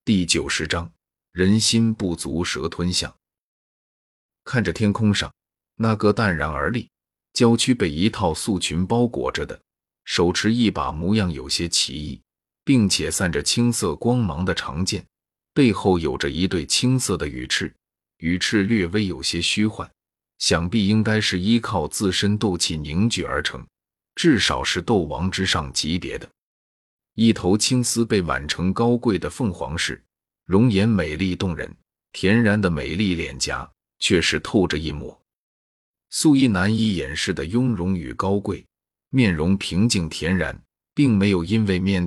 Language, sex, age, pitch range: Chinese, male, 30-49, 85-110 Hz